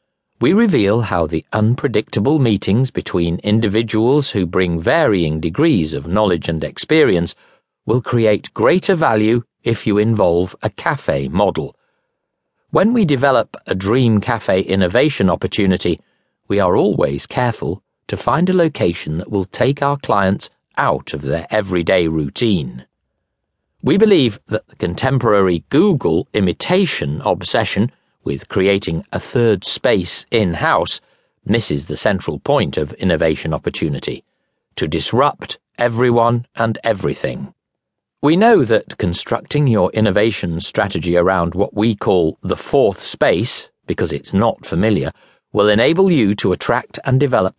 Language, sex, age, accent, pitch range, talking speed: English, male, 50-69, British, 90-120 Hz, 130 wpm